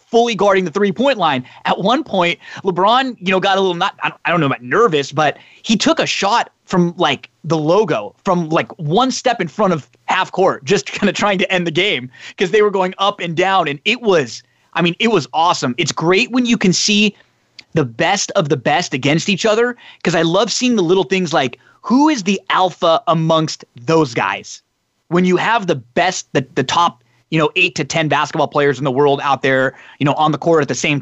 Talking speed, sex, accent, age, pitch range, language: 235 wpm, male, American, 20-39, 150-200 Hz, English